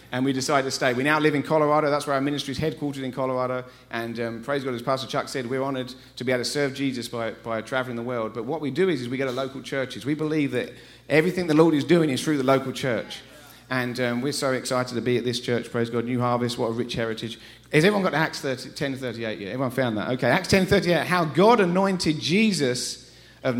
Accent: British